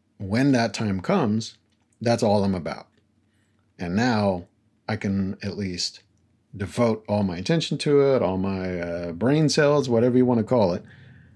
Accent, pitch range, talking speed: American, 105-130 Hz, 165 wpm